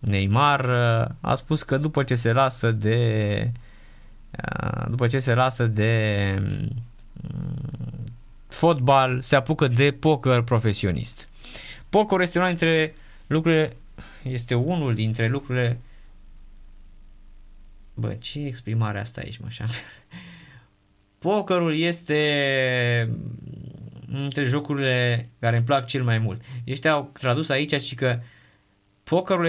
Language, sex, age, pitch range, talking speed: Romanian, male, 20-39, 100-140 Hz, 110 wpm